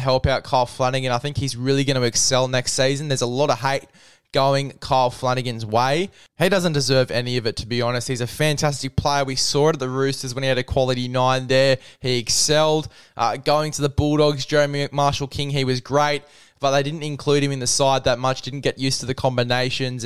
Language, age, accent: English, 10-29, Australian